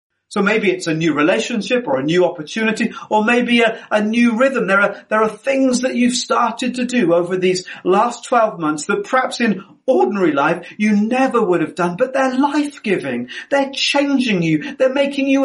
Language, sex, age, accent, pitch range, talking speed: English, male, 40-59, British, 170-235 Hz, 200 wpm